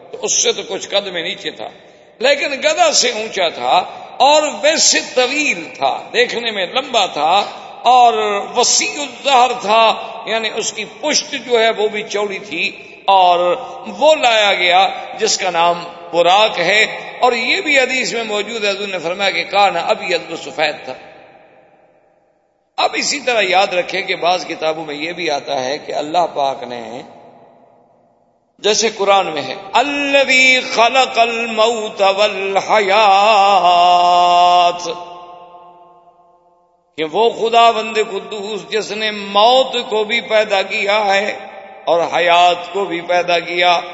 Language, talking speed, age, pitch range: Urdu, 130 wpm, 50-69, 175-235 Hz